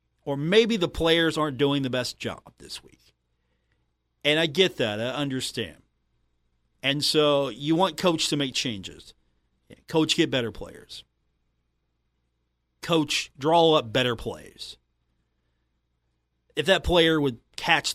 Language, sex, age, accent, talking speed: English, male, 40-59, American, 130 wpm